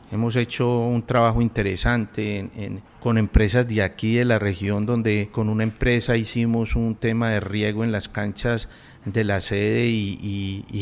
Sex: male